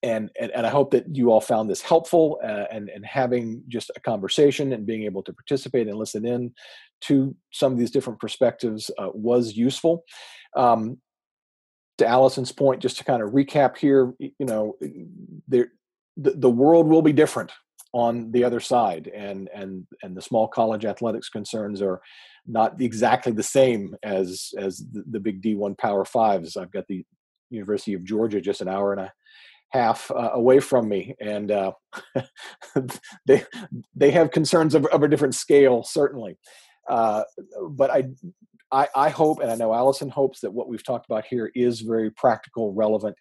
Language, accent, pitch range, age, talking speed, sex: English, American, 110-140 Hz, 40-59, 180 wpm, male